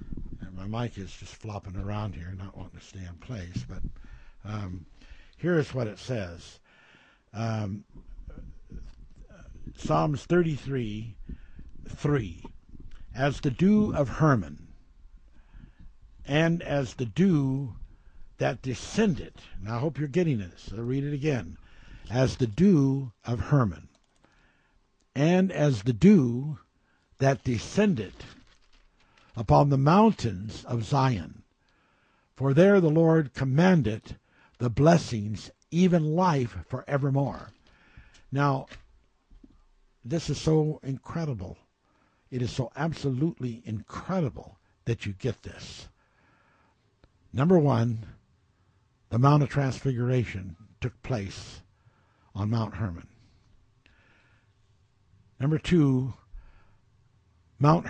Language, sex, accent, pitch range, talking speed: English, male, American, 100-140 Hz, 105 wpm